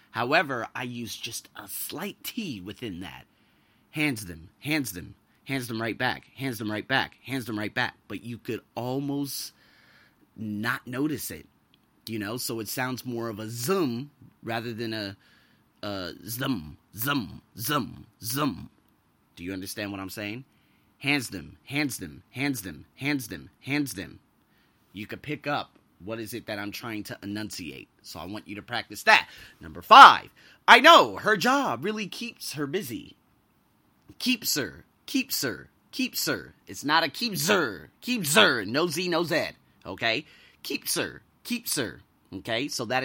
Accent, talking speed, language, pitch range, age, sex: American, 165 wpm, English, 110-155 Hz, 30-49, male